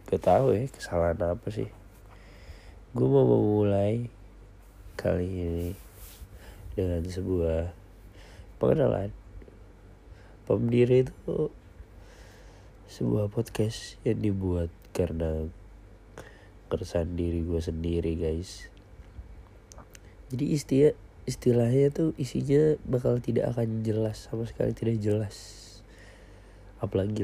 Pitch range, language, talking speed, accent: 90-105 Hz, Indonesian, 85 wpm, native